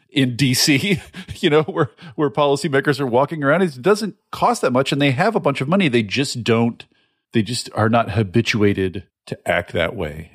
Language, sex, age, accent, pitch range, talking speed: English, male, 40-59, American, 110-140 Hz, 195 wpm